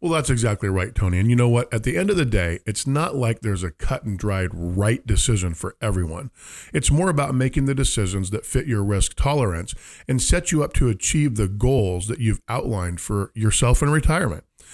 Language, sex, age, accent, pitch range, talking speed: English, male, 40-59, American, 100-130 Hz, 215 wpm